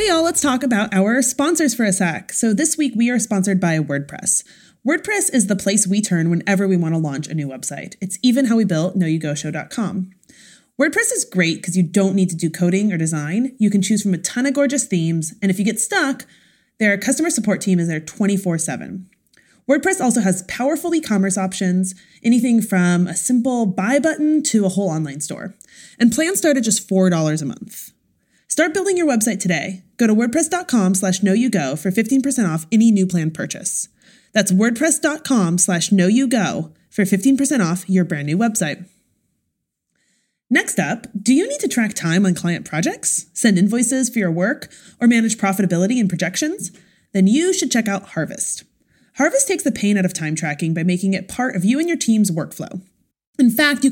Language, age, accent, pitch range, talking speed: English, 20-39, American, 180-250 Hz, 195 wpm